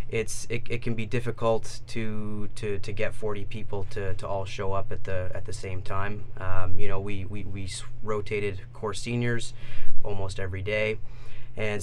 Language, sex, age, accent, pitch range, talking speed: English, male, 20-39, American, 100-120 Hz, 185 wpm